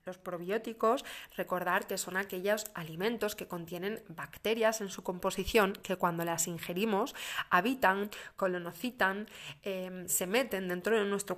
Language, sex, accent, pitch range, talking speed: Spanish, female, Spanish, 180-215 Hz, 130 wpm